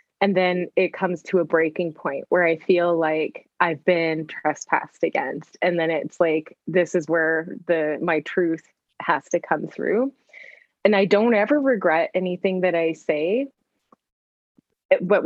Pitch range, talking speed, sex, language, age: 175-220 Hz, 155 wpm, female, English, 20-39